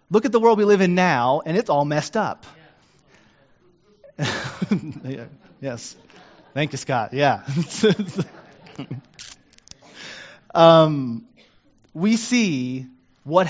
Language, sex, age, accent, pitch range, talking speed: English, male, 30-49, American, 125-165 Hz, 100 wpm